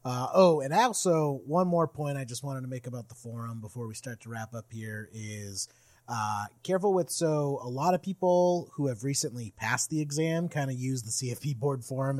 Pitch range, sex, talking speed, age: 120-150 Hz, male, 215 wpm, 30-49